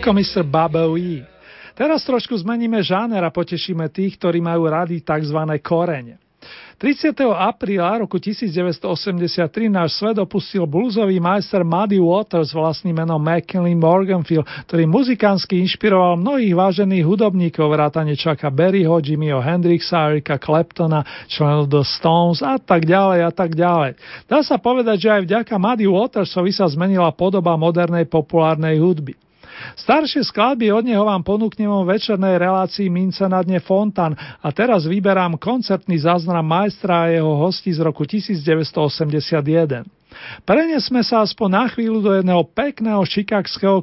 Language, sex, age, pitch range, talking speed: Slovak, male, 40-59, 165-205 Hz, 135 wpm